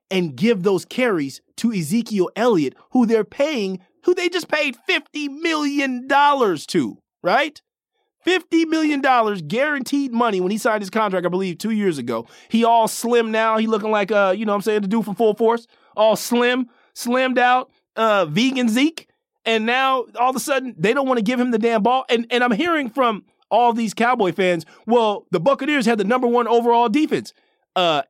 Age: 30-49